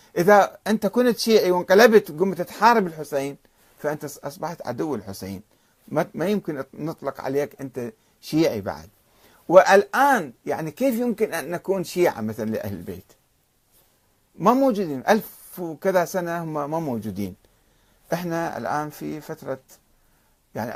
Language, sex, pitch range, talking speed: Arabic, male, 120-195 Hz, 120 wpm